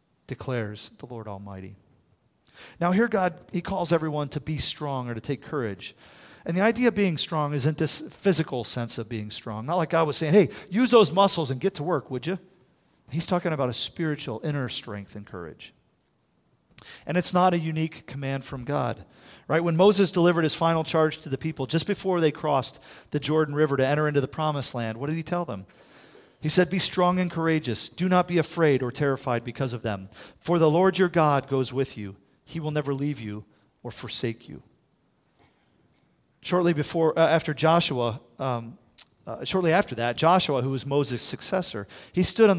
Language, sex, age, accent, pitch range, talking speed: English, male, 40-59, American, 120-165 Hz, 195 wpm